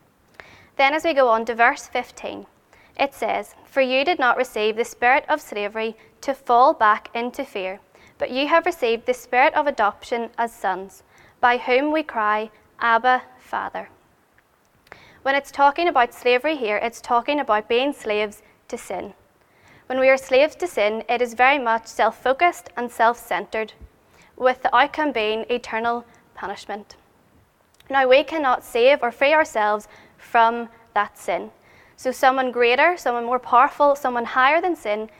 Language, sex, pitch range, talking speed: English, female, 225-270 Hz, 155 wpm